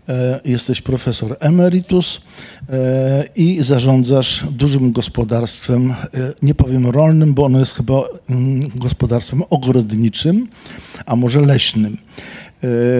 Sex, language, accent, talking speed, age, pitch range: male, Polish, native, 90 wpm, 50-69, 120-140 Hz